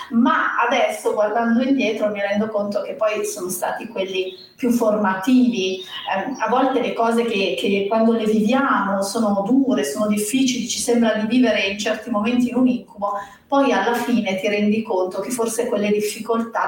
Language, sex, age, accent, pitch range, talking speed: Italian, female, 40-59, native, 205-245 Hz, 175 wpm